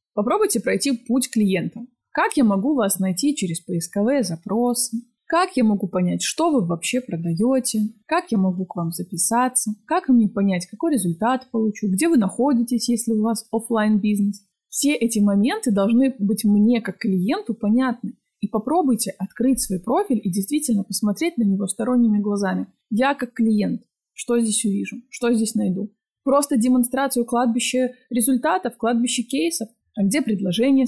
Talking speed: 155 wpm